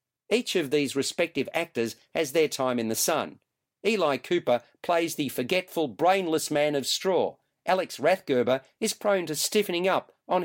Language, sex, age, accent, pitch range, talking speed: English, male, 50-69, Australian, 140-185 Hz, 160 wpm